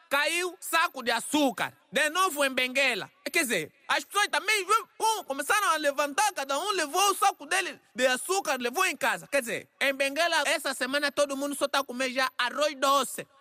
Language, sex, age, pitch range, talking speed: Portuguese, male, 20-39, 260-330 Hz, 190 wpm